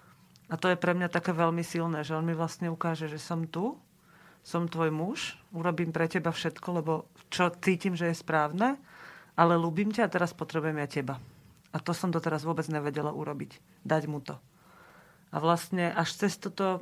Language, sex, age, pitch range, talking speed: Slovak, female, 40-59, 165-205 Hz, 185 wpm